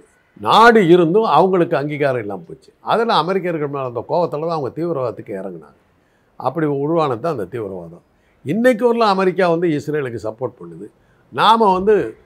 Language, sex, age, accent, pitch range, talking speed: Tamil, male, 60-79, native, 115-175 Hz, 135 wpm